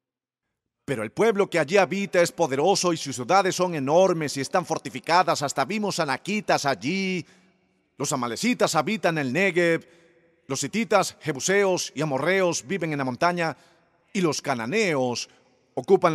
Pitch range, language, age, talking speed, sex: 155-260 Hz, Spanish, 40-59, 140 wpm, male